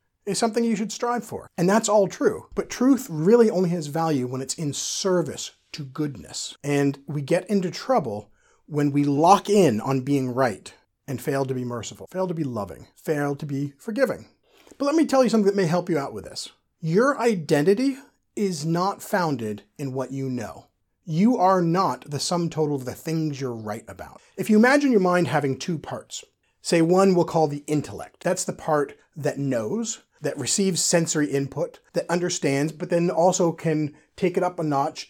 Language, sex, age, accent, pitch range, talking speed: English, male, 40-59, American, 140-190 Hz, 195 wpm